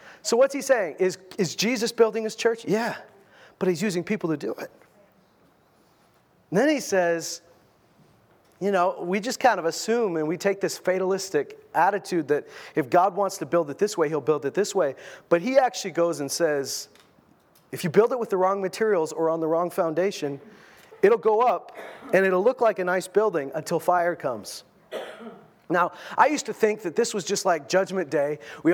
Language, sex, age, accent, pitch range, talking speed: English, male, 30-49, American, 170-220 Hz, 195 wpm